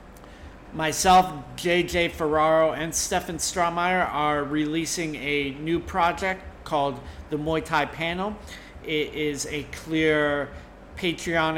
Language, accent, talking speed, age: English, American, 110 wpm, 40-59